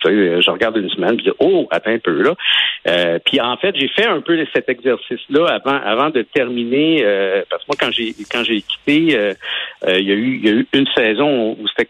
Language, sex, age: French, male, 60-79